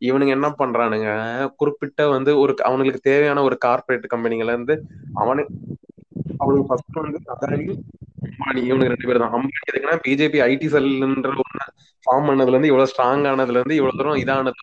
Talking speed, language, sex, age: 125 wpm, Tamil, male, 20-39